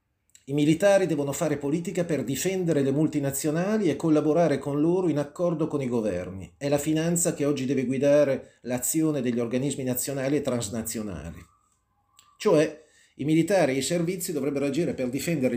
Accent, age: native, 40-59